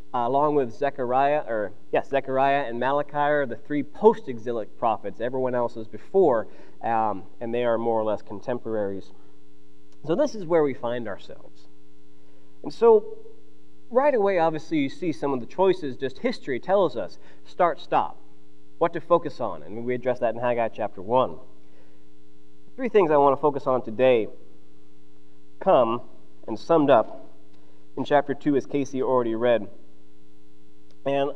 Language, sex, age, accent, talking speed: English, male, 20-39, American, 155 wpm